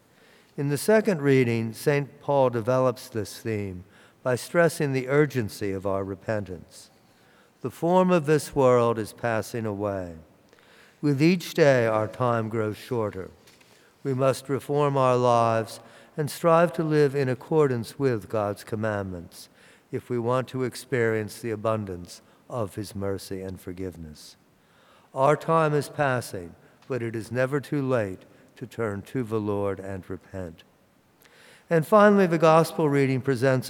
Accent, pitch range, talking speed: American, 105-140 Hz, 140 wpm